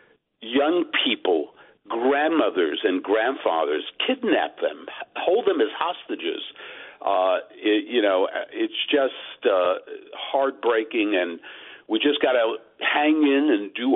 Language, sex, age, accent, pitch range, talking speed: English, male, 60-79, American, 315-425 Hz, 120 wpm